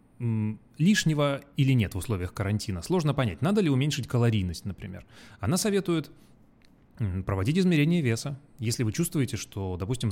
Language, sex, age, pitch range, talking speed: Russian, male, 30-49, 105-160 Hz, 135 wpm